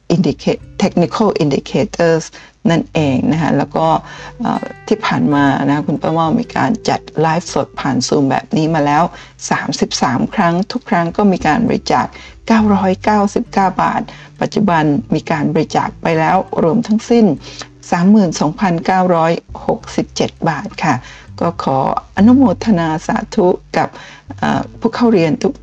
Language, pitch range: Thai, 155-215 Hz